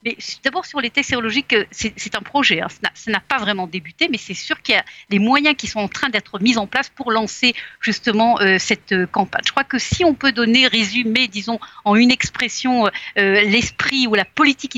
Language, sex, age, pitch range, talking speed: Russian, female, 50-69, 205-275 Hz, 220 wpm